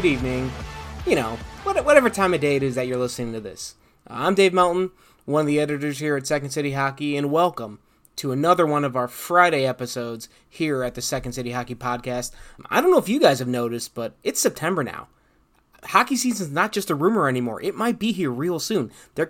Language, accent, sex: English, American, male